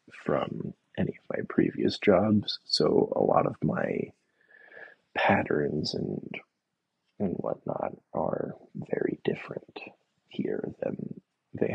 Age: 20-39